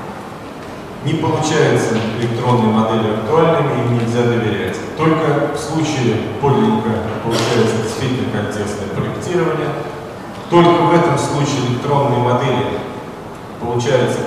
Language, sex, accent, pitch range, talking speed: Russian, male, native, 120-150 Hz, 95 wpm